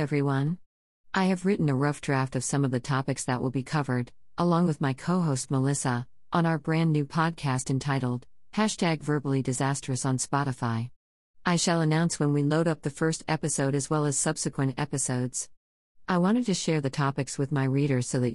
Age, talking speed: 50-69, 190 wpm